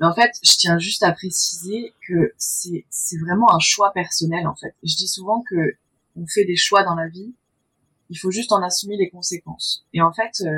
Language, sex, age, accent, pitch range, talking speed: French, female, 20-39, French, 170-215 Hz, 205 wpm